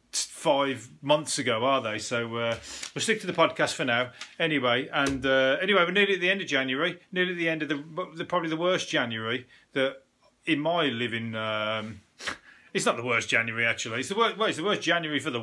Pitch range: 125-160 Hz